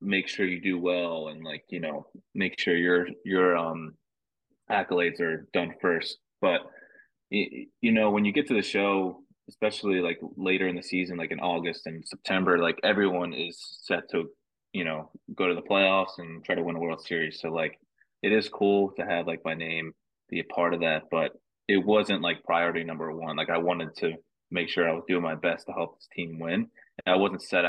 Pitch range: 85-95 Hz